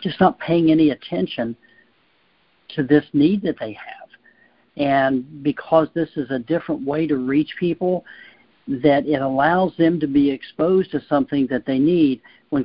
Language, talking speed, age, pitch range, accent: English, 160 wpm, 60-79, 135-165 Hz, American